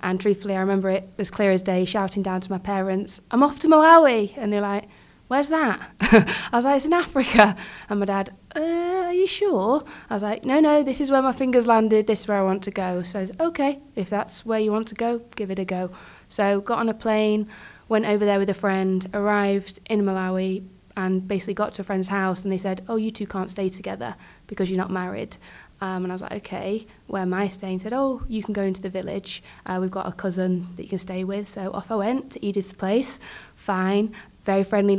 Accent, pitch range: British, 190-220 Hz